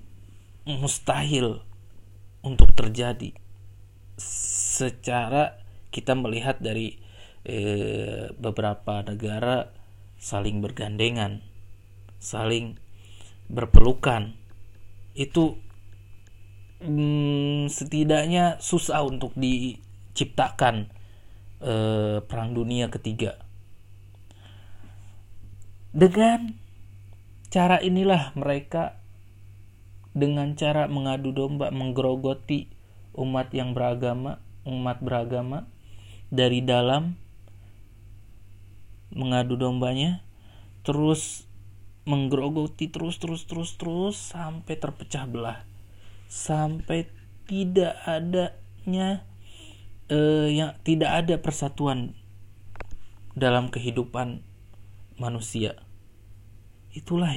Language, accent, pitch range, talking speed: Indonesian, native, 100-140 Hz, 65 wpm